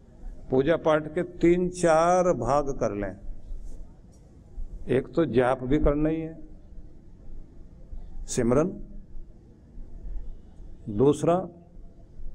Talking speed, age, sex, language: 85 wpm, 50-69, male, Hindi